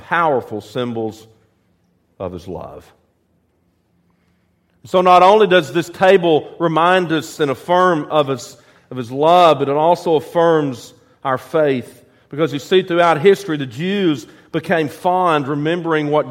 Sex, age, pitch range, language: male, 40-59, 130-185 Hz, English